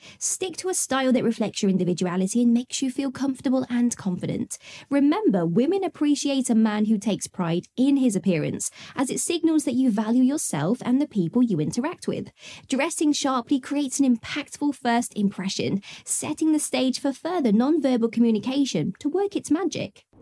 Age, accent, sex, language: 20-39, British, female, English